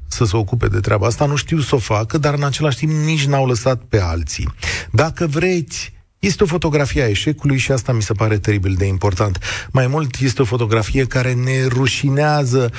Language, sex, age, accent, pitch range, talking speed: Romanian, male, 40-59, native, 105-145 Hz, 200 wpm